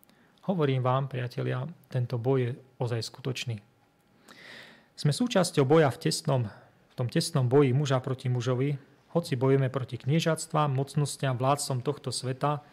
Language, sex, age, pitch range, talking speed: Slovak, male, 30-49, 125-150 Hz, 130 wpm